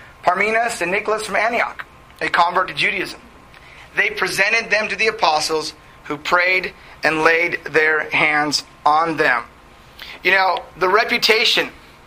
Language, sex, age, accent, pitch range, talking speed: English, male, 30-49, American, 175-215 Hz, 135 wpm